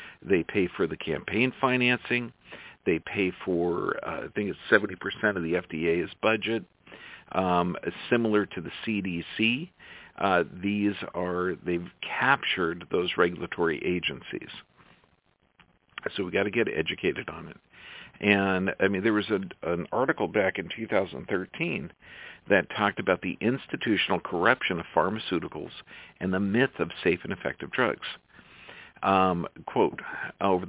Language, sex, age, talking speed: English, male, 50-69, 135 wpm